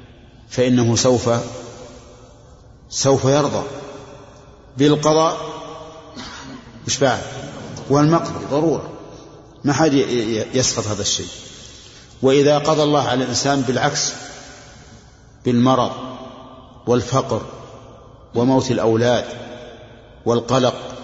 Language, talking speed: Arabic, 70 wpm